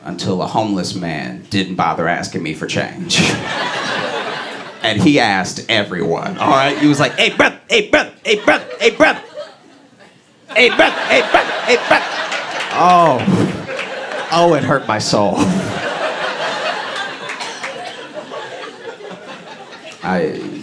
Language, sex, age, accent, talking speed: English, male, 30-49, American, 115 wpm